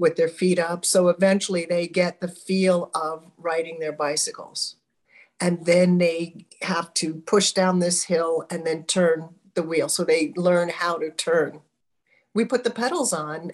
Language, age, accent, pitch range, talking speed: English, 50-69, American, 170-210 Hz, 175 wpm